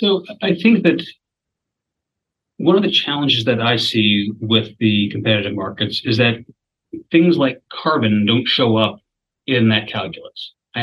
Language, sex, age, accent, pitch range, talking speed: English, male, 30-49, American, 110-135 Hz, 150 wpm